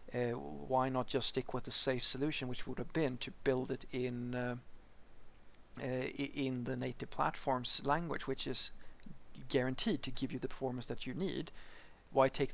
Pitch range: 125-140 Hz